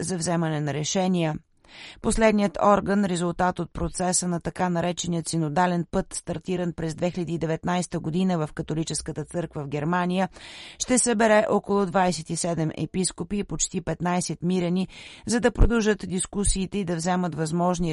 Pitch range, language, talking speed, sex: 165-195 Hz, Bulgarian, 135 wpm, female